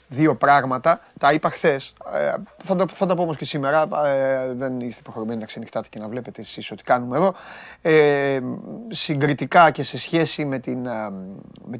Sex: male